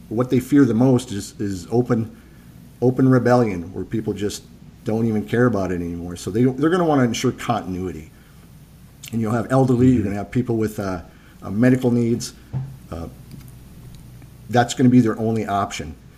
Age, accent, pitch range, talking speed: 50-69, American, 105-130 Hz, 185 wpm